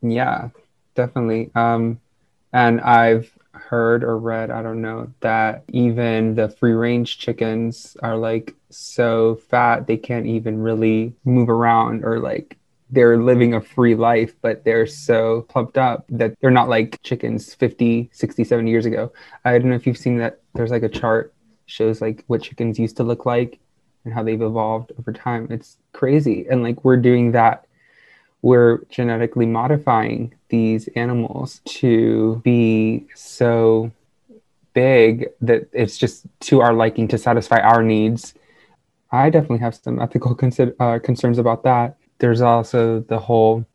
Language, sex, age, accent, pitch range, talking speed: English, male, 20-39, American, 115-125 Hz, 155 wpm